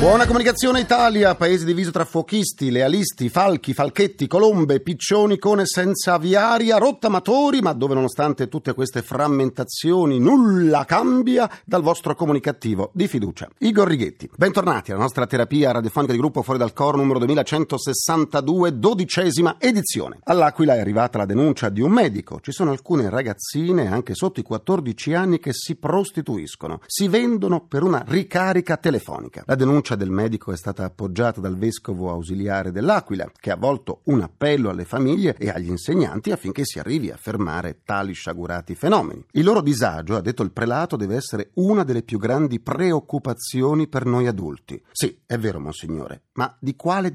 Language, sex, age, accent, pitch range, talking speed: Italian, male, 40-59, native, 115-175 Hz, 160 wpm